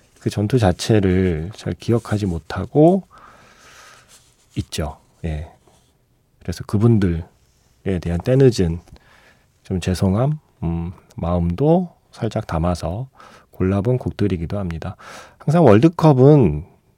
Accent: native